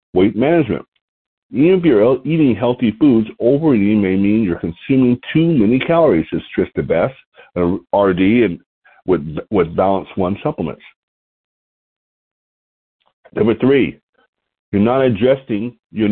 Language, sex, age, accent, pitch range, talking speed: English, male, 50-69, American, 95-135 Hz, 125 wpm